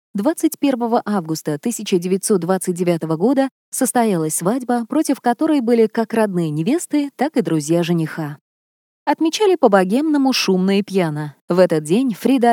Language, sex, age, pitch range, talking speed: Russian, female, 20-39, 180-245 Hz, 120 wpm